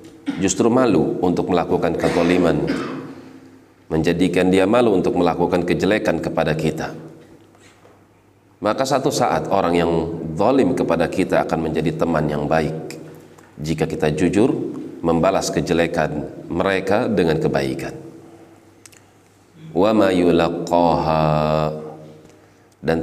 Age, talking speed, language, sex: 40-59, 90 wpm, Indonesian, male